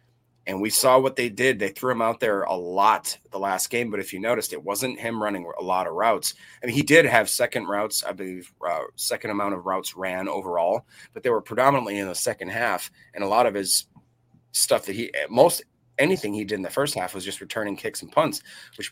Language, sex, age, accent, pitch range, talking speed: English, male, 30-49, American, 100-125 Hz, 240 wpm